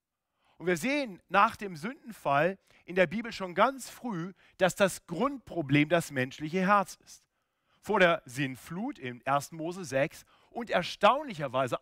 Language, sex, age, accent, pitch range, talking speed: German, male, 50-69, German, 135-205 Hz, 140 wpm